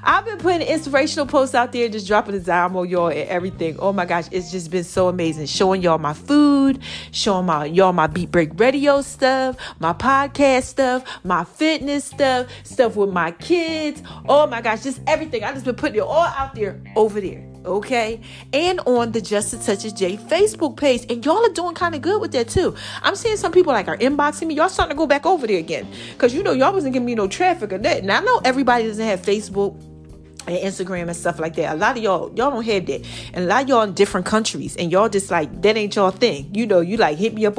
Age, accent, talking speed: 30-49, American, 240 wpm